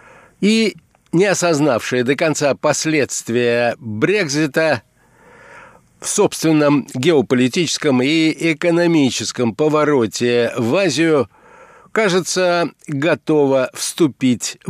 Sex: male